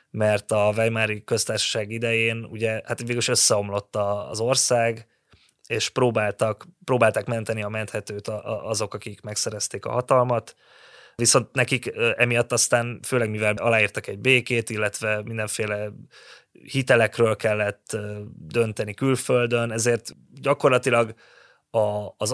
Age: 20-39